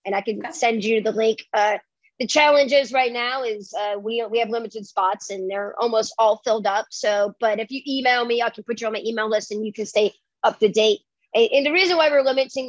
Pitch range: 215-250 Hz